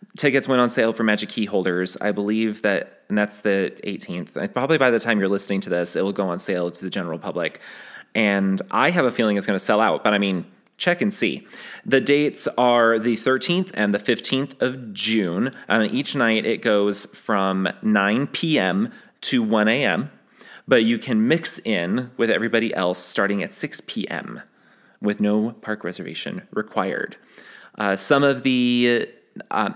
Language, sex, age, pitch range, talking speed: English, male, 30-49, 105-140 Hz, 185 wpm